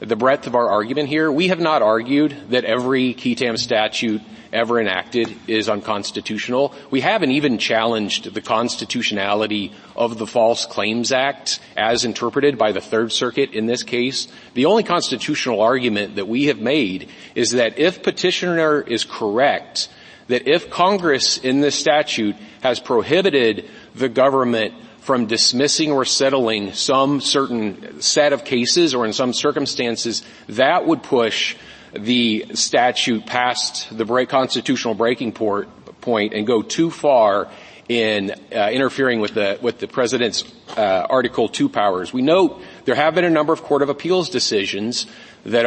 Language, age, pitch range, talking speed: English, 40-59, 110-140 Hz, 150 wpm